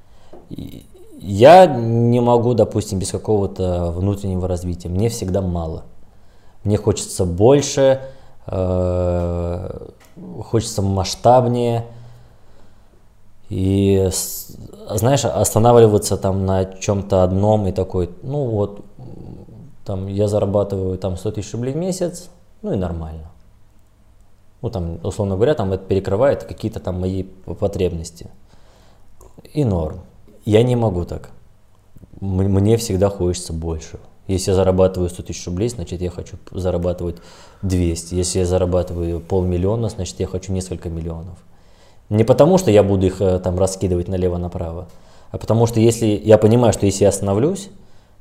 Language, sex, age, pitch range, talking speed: Russian, male, 20-39, 90-105 Hz, 125 wpm